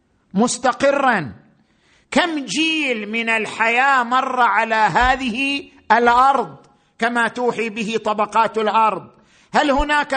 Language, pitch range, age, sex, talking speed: Arabic, 225-275 Hz, 50-69, male, 95 wpm